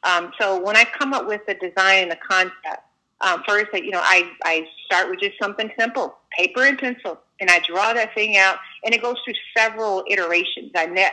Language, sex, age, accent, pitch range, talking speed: English, female, 30-49, American, 175-215 Hz, 215 wpm